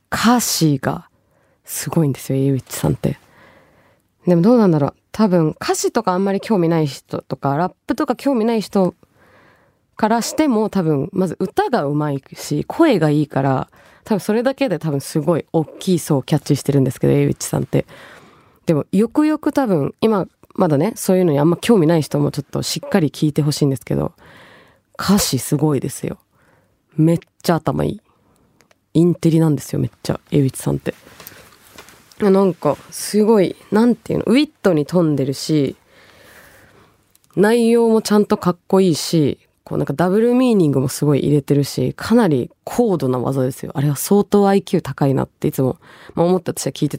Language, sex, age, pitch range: Japanese, female, 20-39, 145-215 Hz